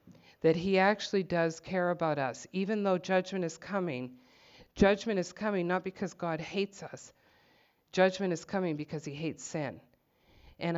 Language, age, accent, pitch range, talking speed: English, 50-69, American, 170-210 Hz, 155 wpm